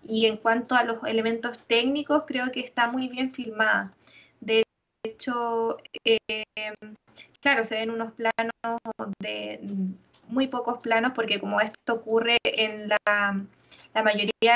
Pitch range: 210-245 Hz